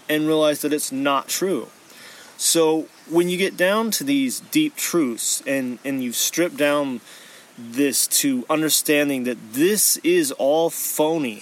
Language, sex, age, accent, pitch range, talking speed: English, male, 30-49, American, 145-195 Hz, 145 wpm